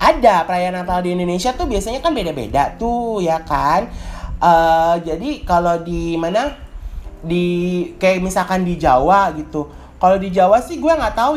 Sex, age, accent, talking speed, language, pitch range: male, 30-49, native, 160 wpm, Indonesian, 150-220 Hz